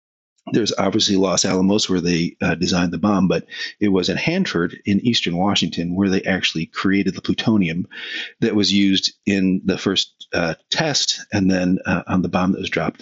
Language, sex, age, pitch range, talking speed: English, male, 40-59, 95-120 Hz, 190 wpm